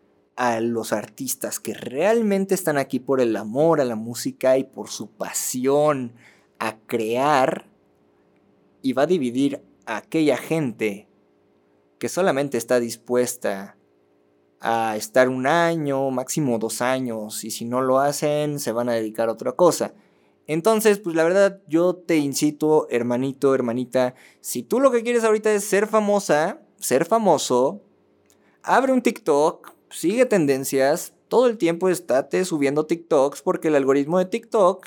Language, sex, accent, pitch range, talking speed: Spanish, male, Mexican, 115-170 Hz, 145 wpm